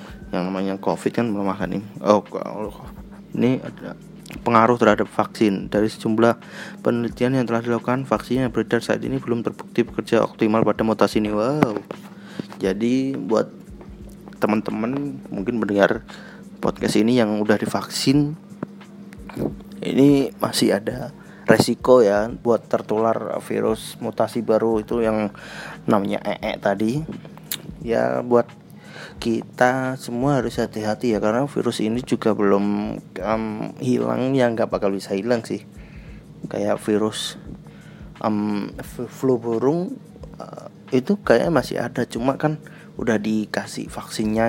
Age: 20-39